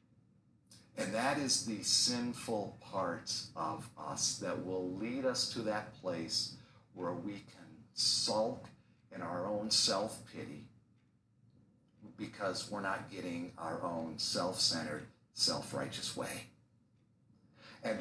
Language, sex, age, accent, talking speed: English, male, 50-69, American, 110 wpm